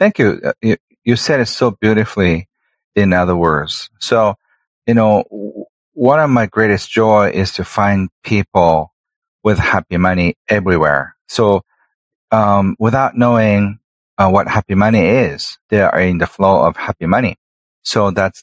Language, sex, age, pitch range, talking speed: English, male, 40-59, 95-115 Hz, 145 wpm